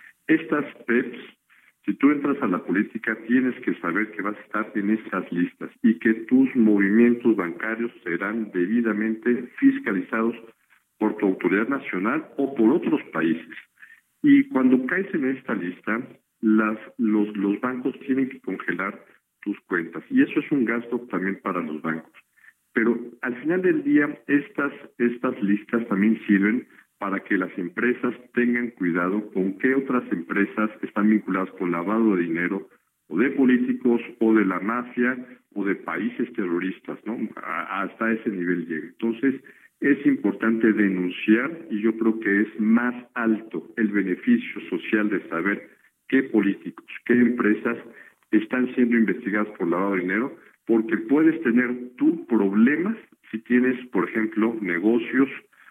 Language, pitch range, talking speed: Spanish, 105-130 Hz, 150 wpm